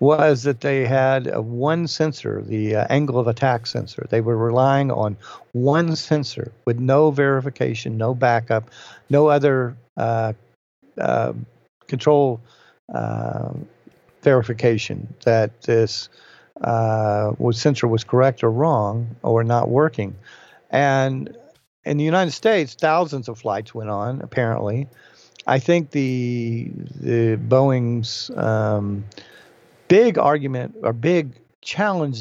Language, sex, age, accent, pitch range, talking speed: English, male, 50-69, American, 115-140 Hz, 120 wpm